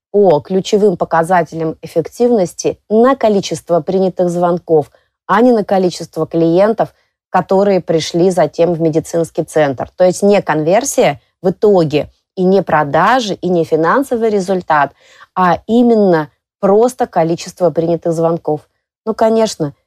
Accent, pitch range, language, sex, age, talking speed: native, 165-205 Hz, Russian, female, 30-49, 120 wpm